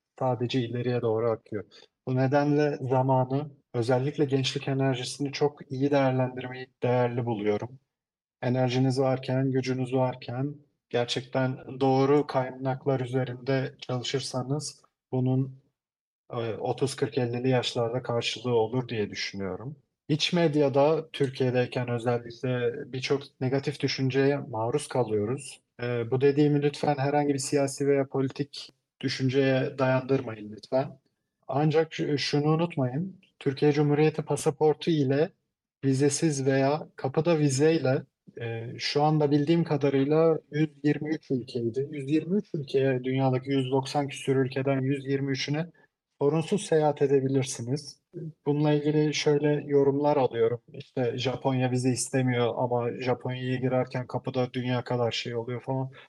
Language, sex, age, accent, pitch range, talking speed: Turkish, male, 40-59, native, 125-145 Hz, 105 wpm